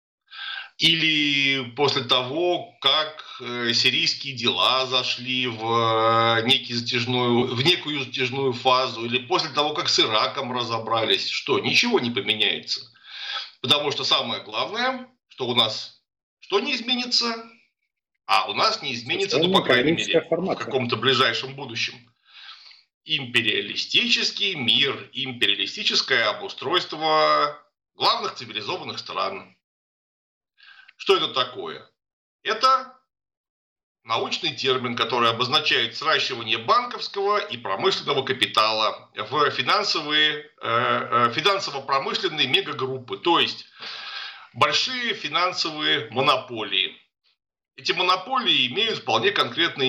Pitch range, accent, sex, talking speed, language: 125-195 Hz, native, male, 95 wpm, Russian